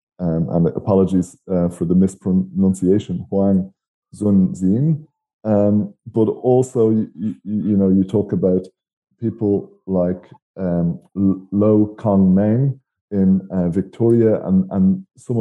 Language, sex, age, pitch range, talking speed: English, male, 20-39, 95-110 Hz, 115 wpm